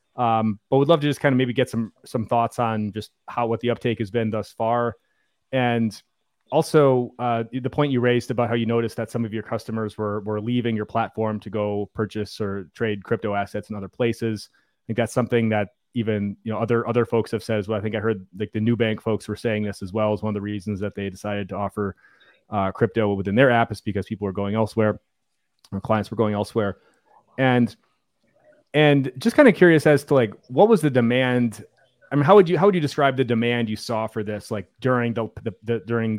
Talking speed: 235 wpm